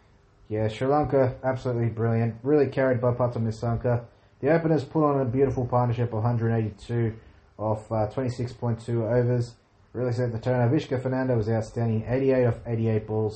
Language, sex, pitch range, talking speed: English, male, 105-125 Hz, 155 wpm